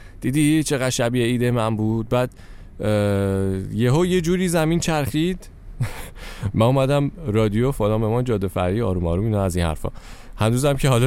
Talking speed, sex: 170 wpm, male